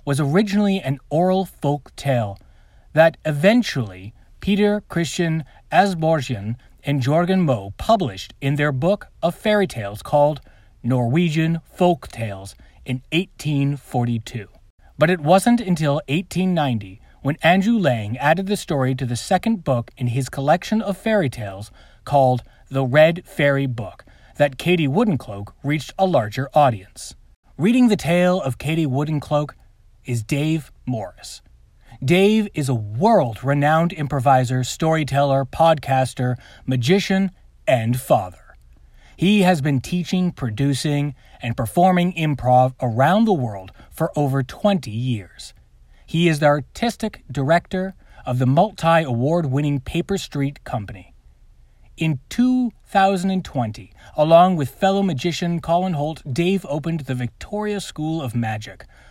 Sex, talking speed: male, 125 wpm